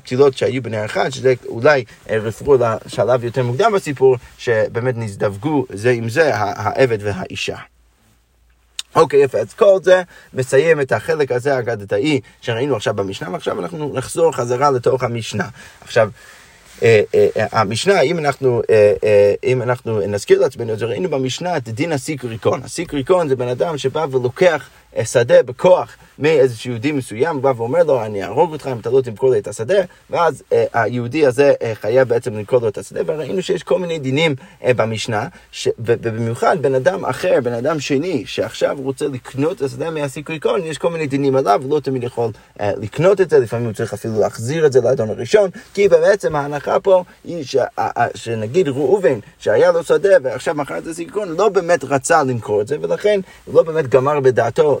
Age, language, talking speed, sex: 30-49, Hebrew, 155 wpm, male